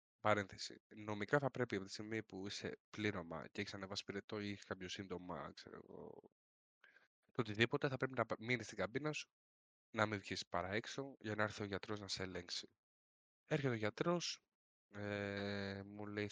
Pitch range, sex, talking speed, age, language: 95-120 Hz, male, 165 wpm, 20-39, Greek